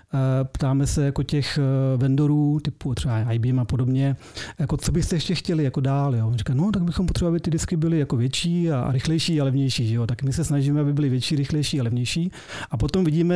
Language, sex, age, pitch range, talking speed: Czech, male, 40-59, 135-155 Hz, 215 wpm